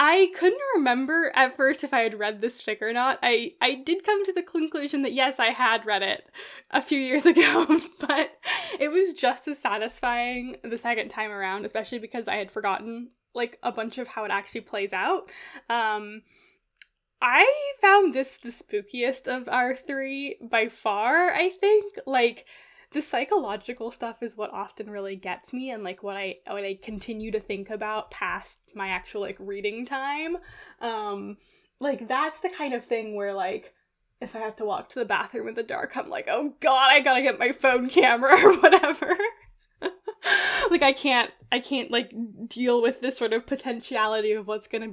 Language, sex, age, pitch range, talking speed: English, female, 10-29, 215-285 Hz, 185 wpm